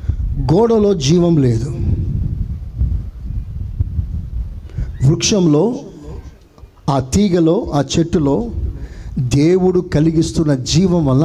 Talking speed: 65 wpm